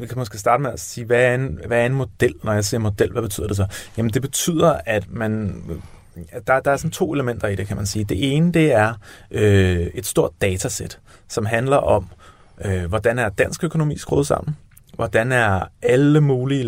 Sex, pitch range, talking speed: male, 95-120 Hz, 220 wpm